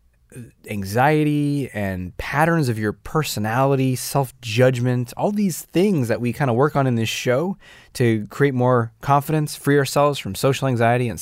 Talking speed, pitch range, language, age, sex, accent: 155 wpm, 105-145 Hz, English, 20-39, male, American